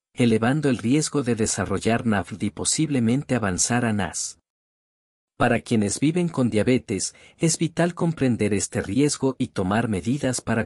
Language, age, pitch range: English, 50-69, 105-135 Hz